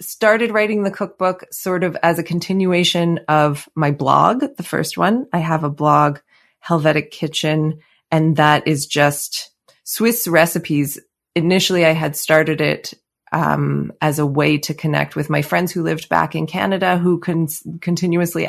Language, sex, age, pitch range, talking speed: English, female, 20-39, 150-170 Hz, 160 wpm